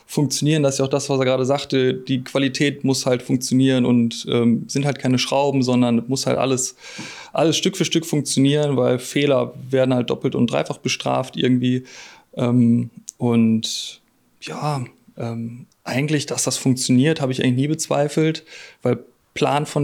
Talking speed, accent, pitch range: 165 wpm, German, 130-155 Hz